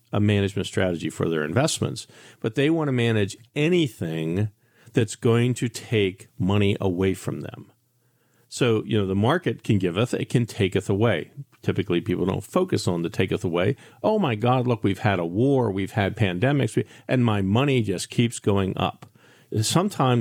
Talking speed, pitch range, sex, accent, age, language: 170 wpm, 95-120 Hz, male, American, 50-69, English